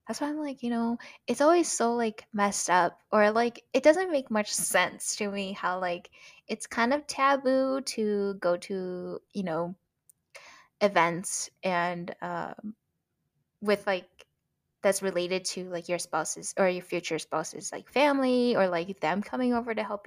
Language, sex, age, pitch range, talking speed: English, female, 10-29, 180-230 Hz, 165 wpm